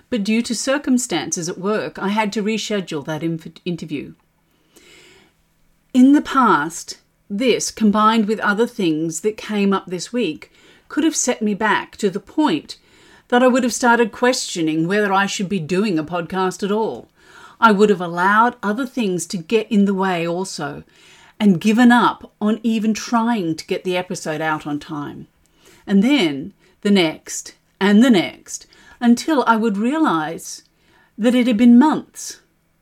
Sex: female